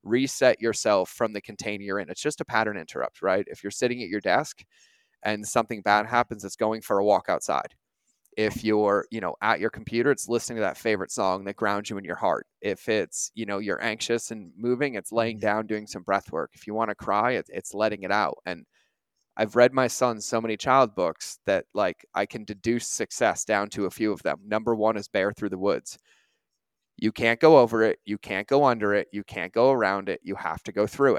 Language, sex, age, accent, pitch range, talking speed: English, male, 20-39, American, 105-120 Hz, 230 wpm